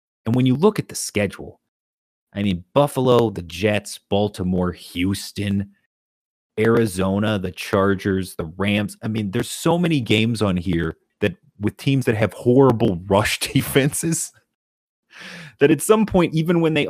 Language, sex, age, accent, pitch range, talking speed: English, male, 30-49, American, 90-115 Hz, 150 wpm